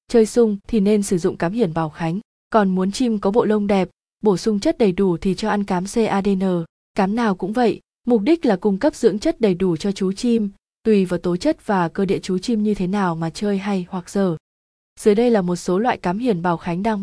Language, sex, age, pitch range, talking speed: Vietnamese, female, 20-39, 190-225 Hz, 250 wpm